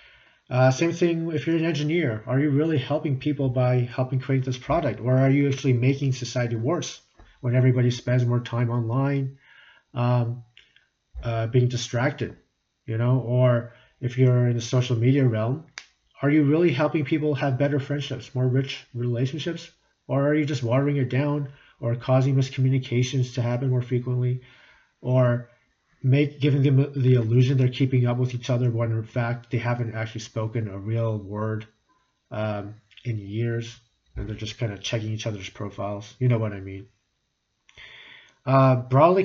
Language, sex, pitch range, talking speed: English, male, 120-140 Hz, 170 wpm